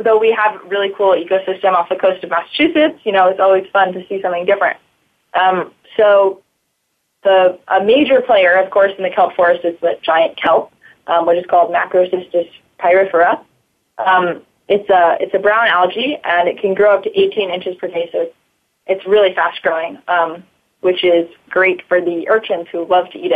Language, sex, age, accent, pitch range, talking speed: English, female, 20-39, American, 175-200 Hz, 195 wpm